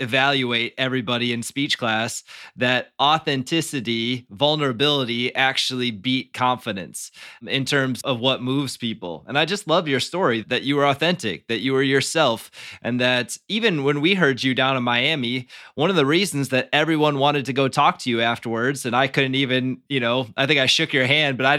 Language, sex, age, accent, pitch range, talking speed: English, male, 20-39, American, 130-150 Hz, 190 wpm